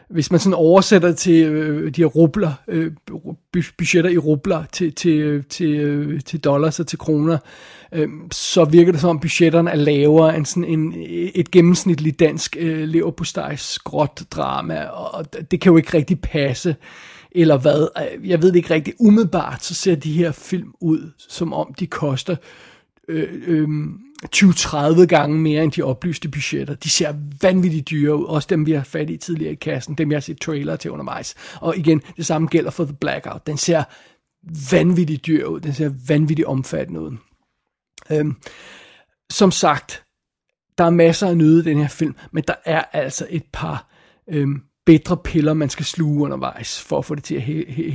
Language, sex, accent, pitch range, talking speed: Danish, male, native, 150-175 Hz, 180 wpm